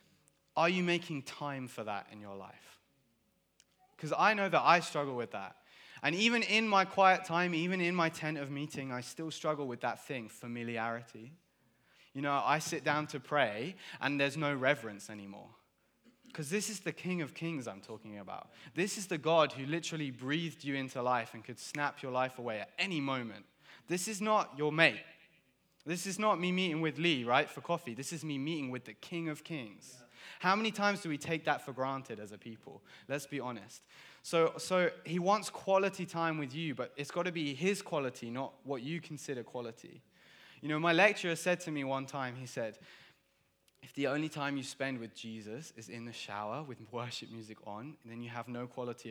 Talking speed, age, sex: 205 wpm, 20-39, male